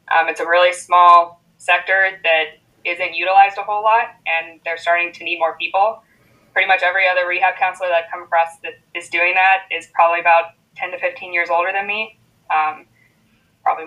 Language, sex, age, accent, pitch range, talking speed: English, female, 20-39, American, 165-185 Hz, 195 wpm